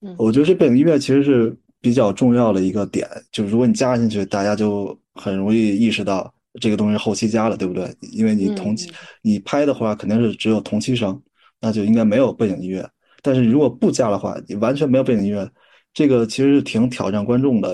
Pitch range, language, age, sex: 100-130 Hz, Chinese, 20-39, male